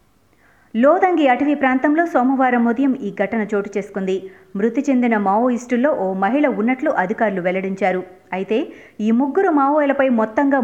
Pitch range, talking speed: 205-270 Hz, 125 wpm